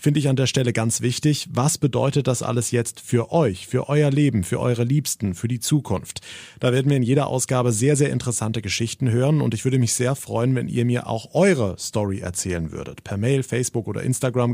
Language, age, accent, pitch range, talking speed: German, 30-49, German, 110-145 Hz, 220 wpm